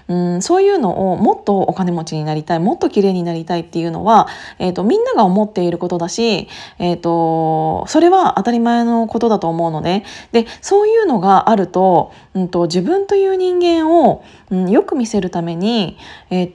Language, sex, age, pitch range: Japanese, female, 20-39, 175-235 Hz